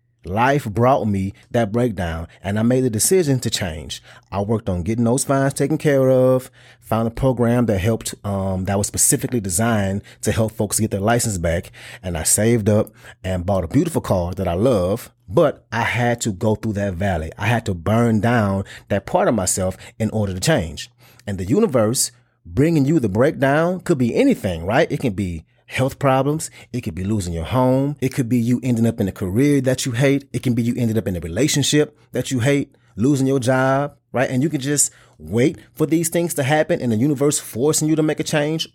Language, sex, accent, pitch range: English, male, American, 105-140 Hz